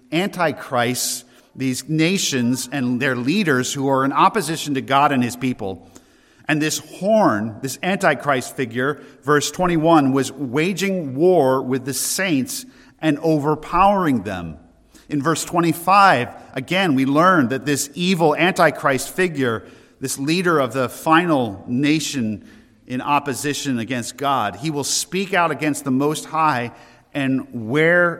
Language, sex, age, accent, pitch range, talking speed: English, male, 50-69, American, 130-170 Hz, 135 wpm